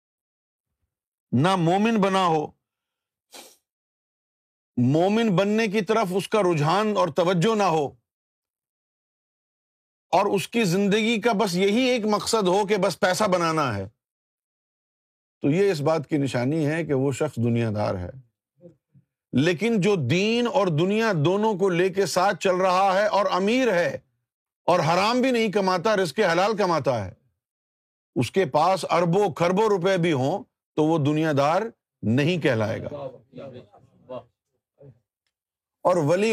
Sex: male